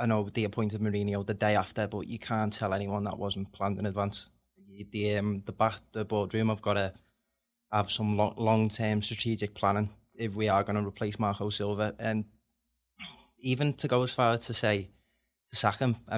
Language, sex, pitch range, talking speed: English, male, 105-110 Hz, 195 wpm